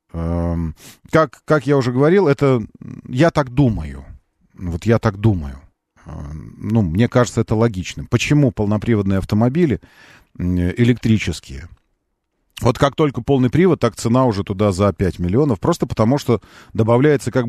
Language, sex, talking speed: Russian, male, 135 wpm